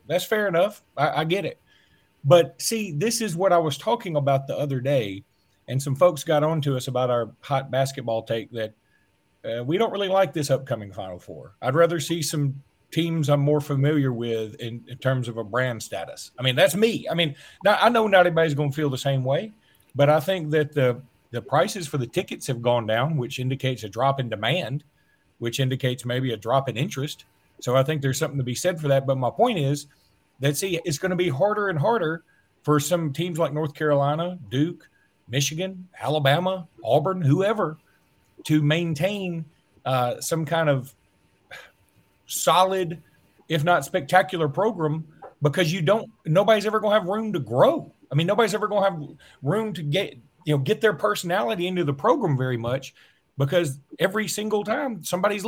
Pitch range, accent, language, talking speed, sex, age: 130-180 Hz, American, English, 195 wpm, male, 40-59